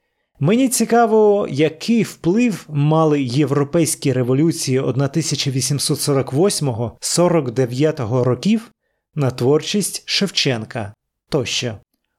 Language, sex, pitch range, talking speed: Ukrainian, male, 130-175 Hz, 65 wpm